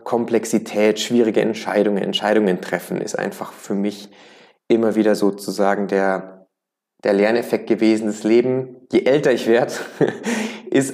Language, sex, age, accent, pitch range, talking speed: German, male, 20-39, German, 95-115 Hz, 125 wpm